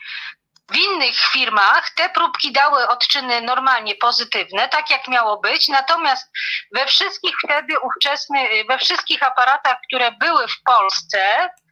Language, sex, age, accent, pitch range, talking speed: Polish, female, 40-59, native, 245-310 Hz, 130 wpm